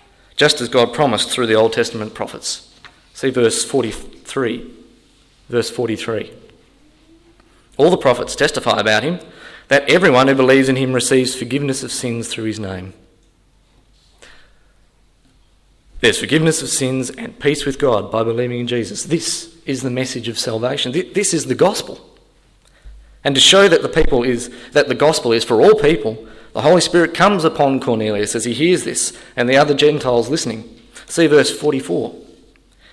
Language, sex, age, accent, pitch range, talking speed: English, male, 30-49, Australian, 110-140 Hz, 160 wpm